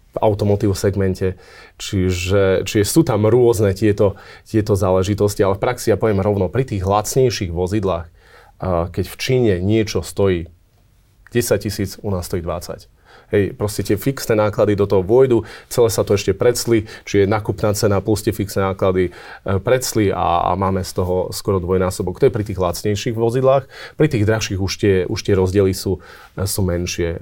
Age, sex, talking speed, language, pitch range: 30-49, male, 170 wpm, Slovak, 95-110 Hz